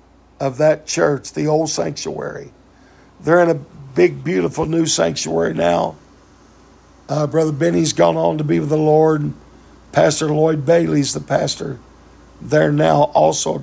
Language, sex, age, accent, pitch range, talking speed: English, male, 50-69, American, 120-170 Hz, 145 wpm